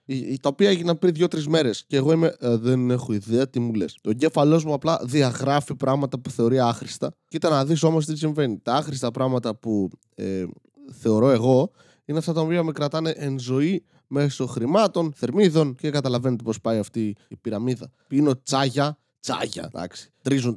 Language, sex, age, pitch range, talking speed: Greek, male, 20-39, 130-170 Hz, 180 wpm